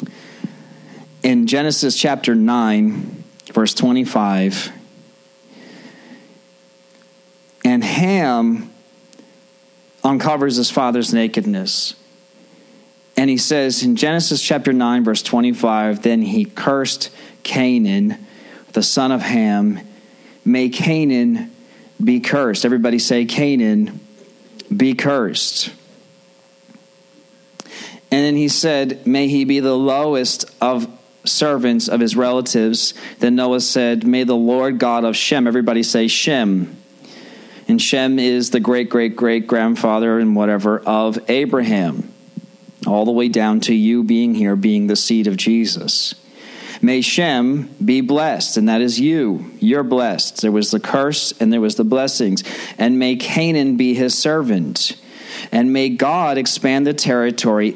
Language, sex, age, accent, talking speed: English, male, 40-59, American, 125 wpm